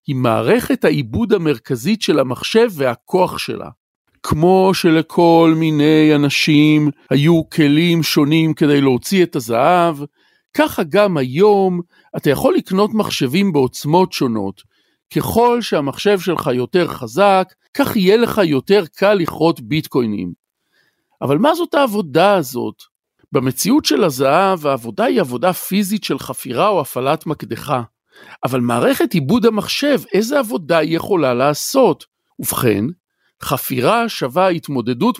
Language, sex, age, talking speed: Hebrew, male, 50-69, 120 wpm